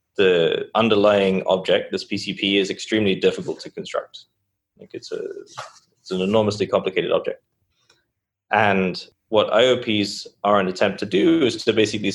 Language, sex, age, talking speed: English, male, 20-39, 145 wpm